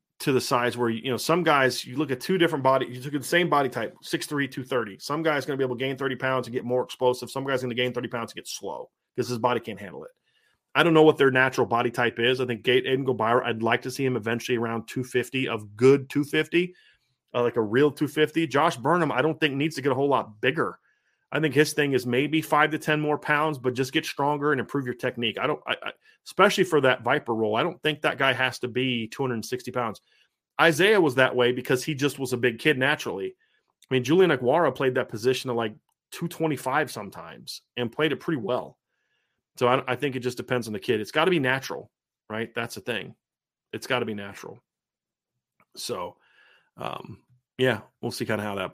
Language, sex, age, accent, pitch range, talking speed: English, male, 30-49, American, 125-150 Hz, 235 wpm